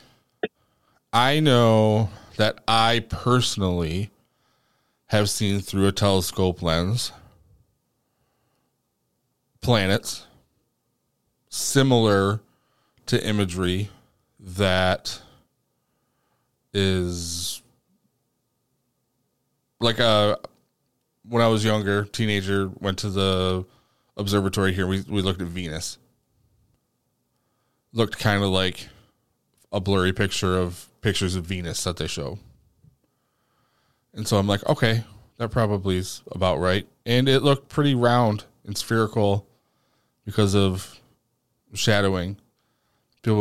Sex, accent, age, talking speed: male, American, 20-39, 95 wpm